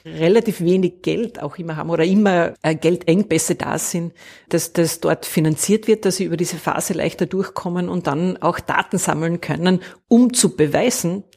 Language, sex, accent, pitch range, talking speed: German, female, Austrian, 165-195 Hz, 175 wpm